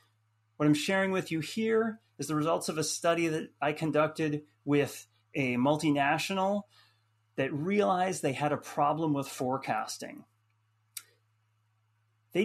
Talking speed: 130 wpm